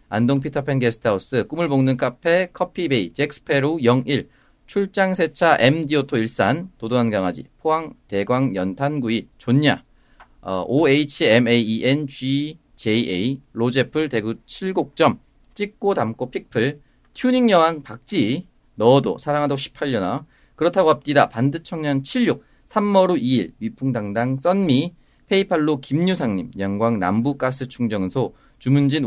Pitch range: 120-170 Hz